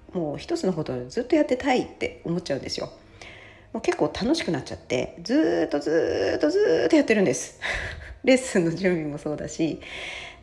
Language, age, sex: Japanese, 40-59, female